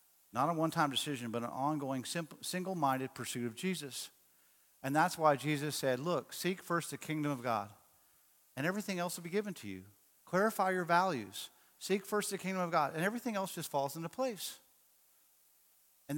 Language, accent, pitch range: English, American, 145-195 Hz